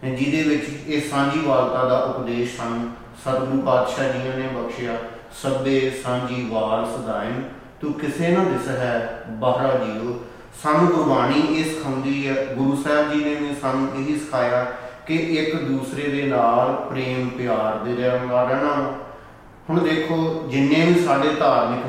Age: 40-59